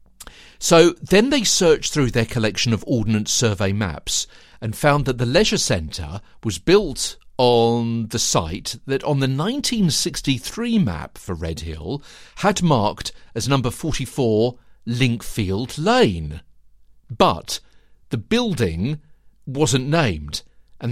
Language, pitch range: English, 110-170 Hz